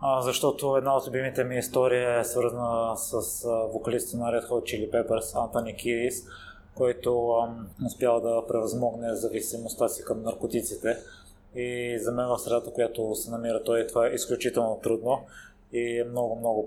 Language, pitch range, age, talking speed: Bulgarian, 115-125 Hz, 20-39, 155 wpm